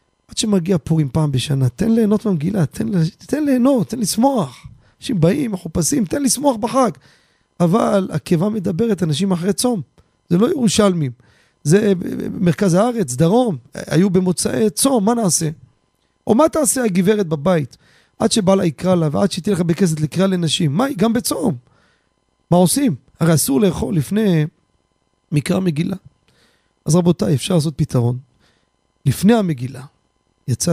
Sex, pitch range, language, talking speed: male, 135-205 Hz, Hebrew, 135 wpm